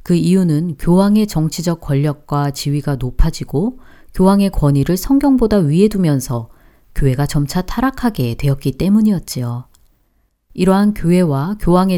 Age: 40-59